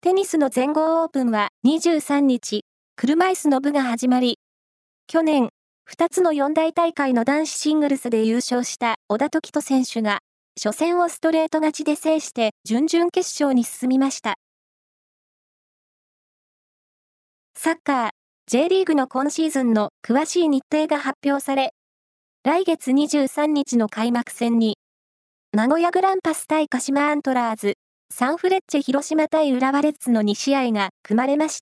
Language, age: Japanese, 20-39